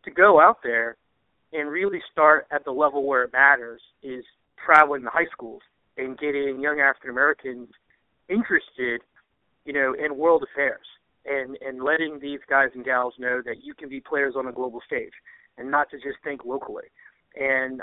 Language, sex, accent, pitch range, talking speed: English, male, American, 125-150 Hz, 175 wpm